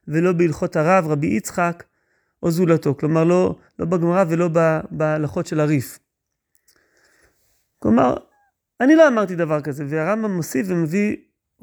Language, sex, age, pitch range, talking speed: Hebrew, male, 30-49, 165-230 Hz, 125 wpm